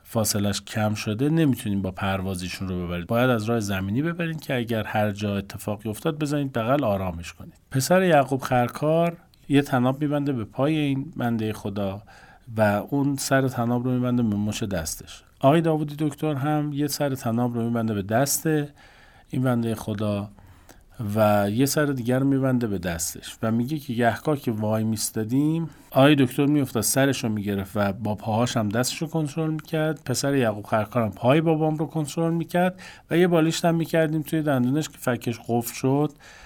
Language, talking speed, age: Persian, 175 wpm, 40-59